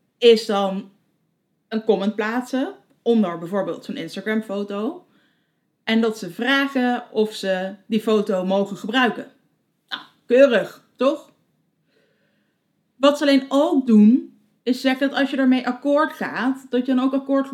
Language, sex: Dutch, female